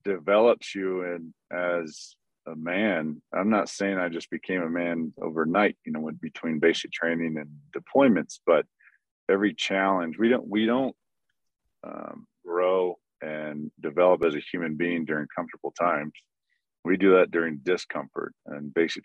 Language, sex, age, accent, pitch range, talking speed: English, male, 40-59, American, 80-90 Hz, 150 wpm